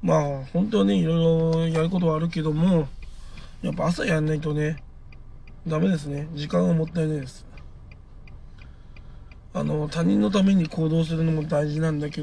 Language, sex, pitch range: Japanese, male, 145-170 Hz